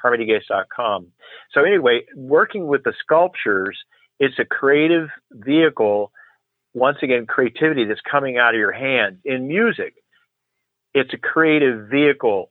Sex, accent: male, American